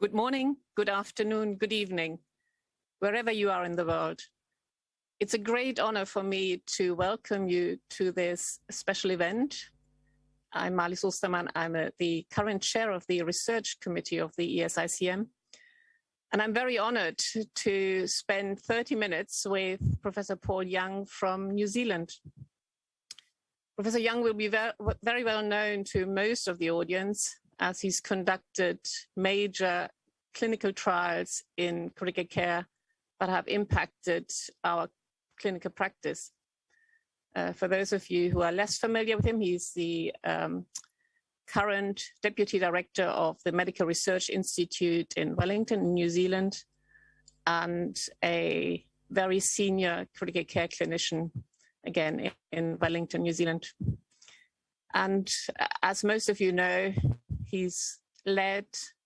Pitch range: 175-215 Hz